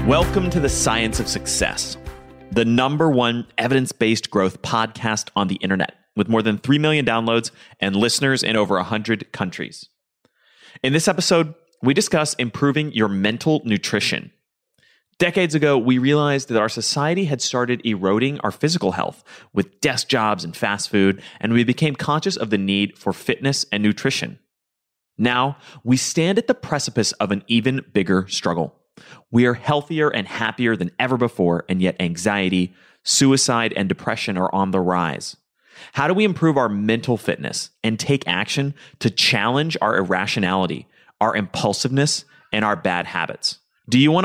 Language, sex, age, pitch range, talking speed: English, male, 30-49, 105-145 Hz, 160 wpm